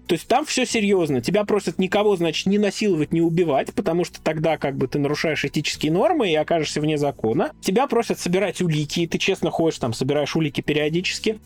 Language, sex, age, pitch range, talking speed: Russian, male, 20-39, 160-200 Hz, 205 wpm